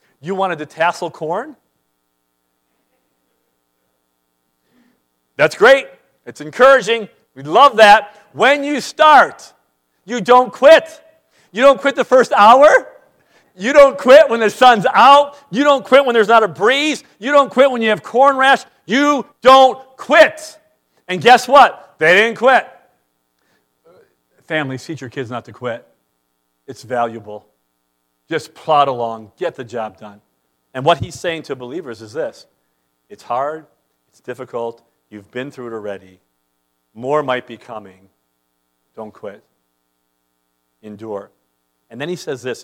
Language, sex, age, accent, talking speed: English, male, 50-69, American, 140 wpm